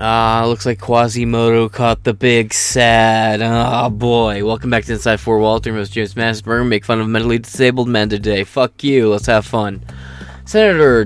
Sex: male